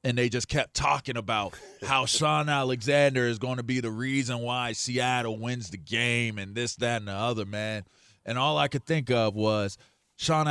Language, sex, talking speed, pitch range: English, male, 200 wpm, 105-140 Hz